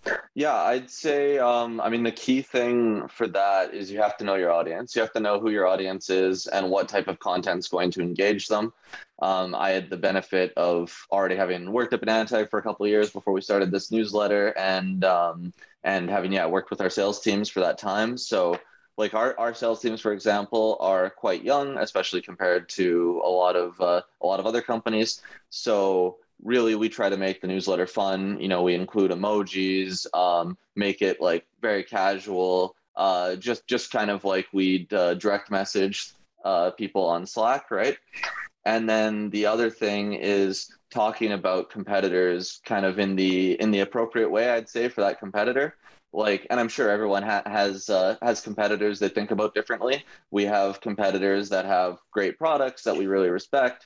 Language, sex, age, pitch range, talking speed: English, male, 20-39, 95-110 Hz, 195 wpm